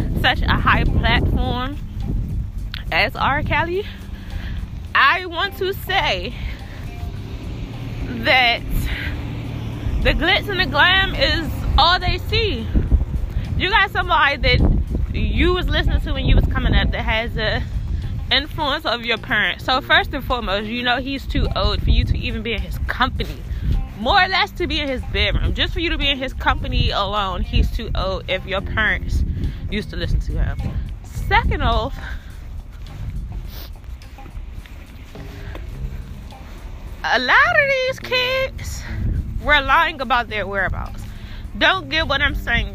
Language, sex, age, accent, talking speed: English, female, 20-39, American, 145 wpm